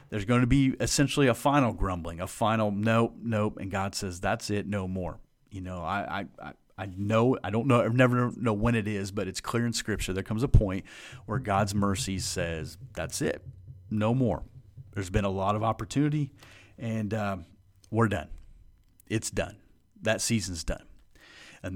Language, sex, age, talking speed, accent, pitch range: English, male, 40-59, 190 wpm, American, 95-125 Hz